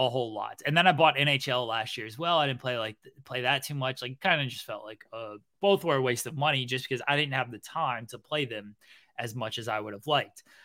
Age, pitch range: 20-39, 115-145 Hz